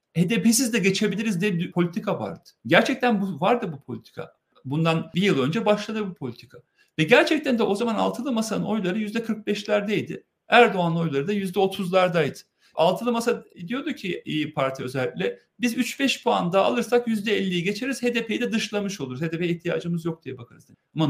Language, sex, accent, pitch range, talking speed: Turkish, male, native, 160-220 Hz, 155 wpm